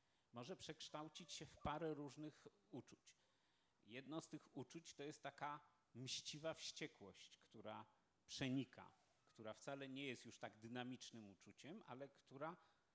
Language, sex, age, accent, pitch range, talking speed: Polish, male, 40-59, native, 120-150 Hz, 130 wpm